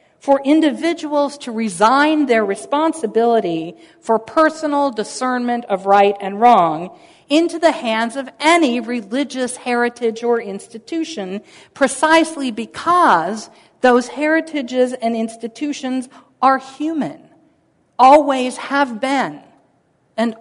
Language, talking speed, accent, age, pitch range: English, 100 wpm, American, 50-69, 220-295 Hz